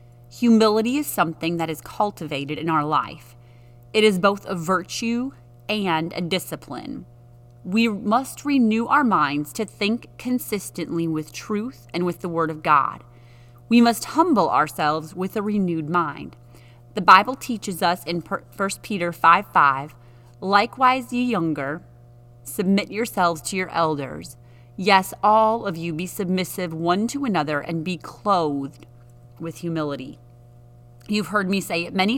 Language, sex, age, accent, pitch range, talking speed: English, female, 30-49, American, 140-210 Hz, 145 wpm